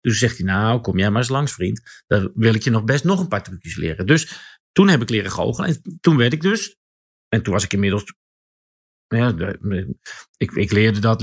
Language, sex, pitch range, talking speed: Dutch, male, 105-155 Hz, 225 wpm